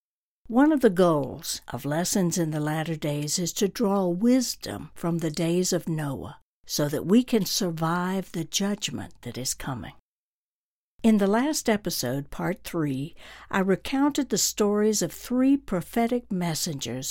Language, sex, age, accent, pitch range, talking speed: English, female, 60-79, American, 150-210 Hz, 150 wpm